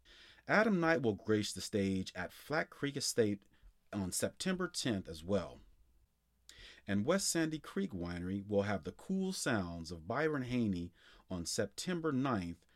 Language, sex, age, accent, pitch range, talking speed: English, male, 40-59, American, 90-115 Hz, 145 wpm